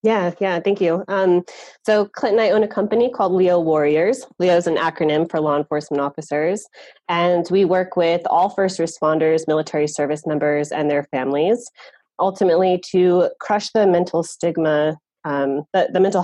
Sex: female